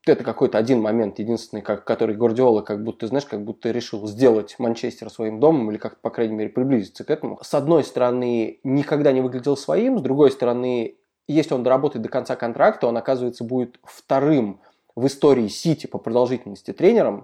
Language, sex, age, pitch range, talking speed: Russian, male, 20-39, 110-125 Hz, 180 wpm